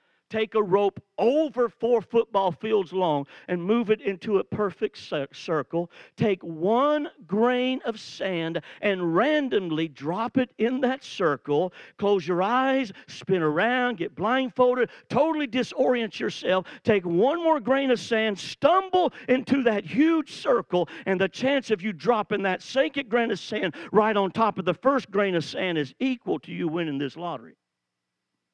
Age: 50-69